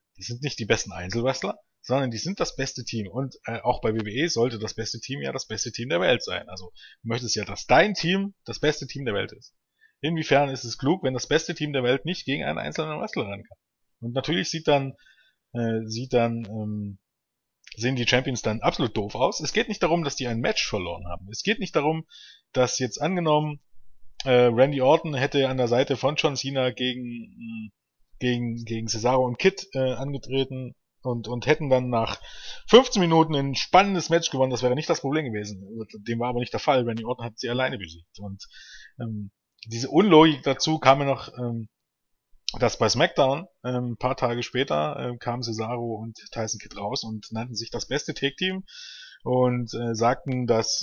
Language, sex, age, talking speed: German, male, 20-39, 205 wpm